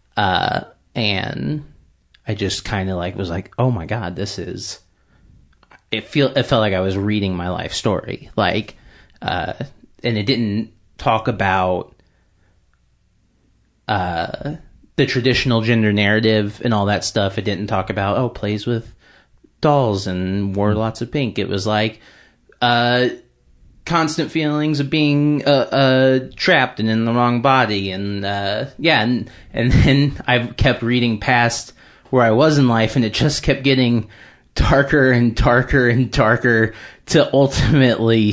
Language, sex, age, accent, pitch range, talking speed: English, male, 30-49, American, 100-125 Hz, 150 wpm